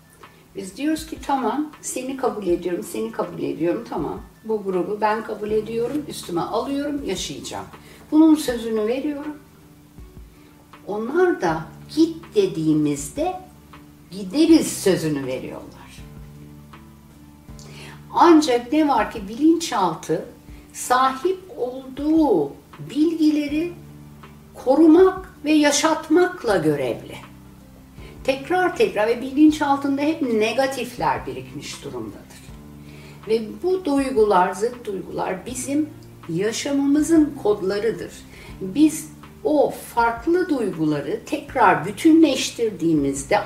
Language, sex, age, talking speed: Turkish, female, 60-79, 90 wpm